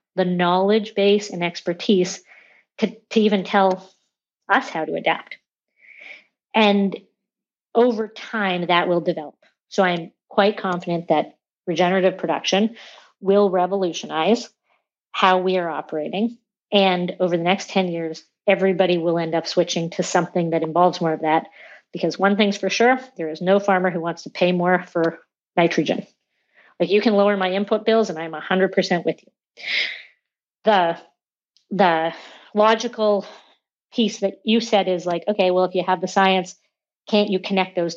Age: 40-59